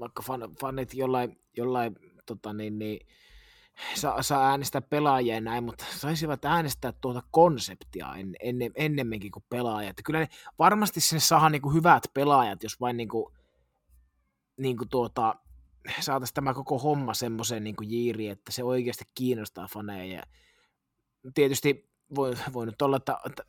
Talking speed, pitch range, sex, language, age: 135 wpm, 105-135 Hz, male, Finnish, 20-39